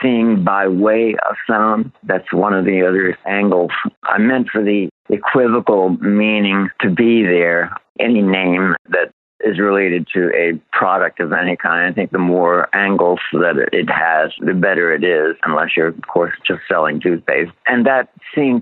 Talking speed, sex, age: 170 wpm, male, 60-79